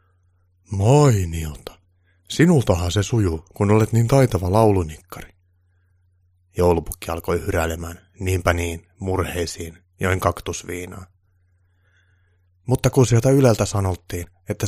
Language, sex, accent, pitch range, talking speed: Finnish, male, native, 90-105 Hz, 100 wpm